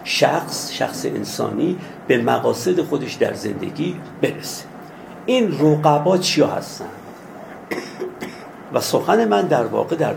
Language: Persian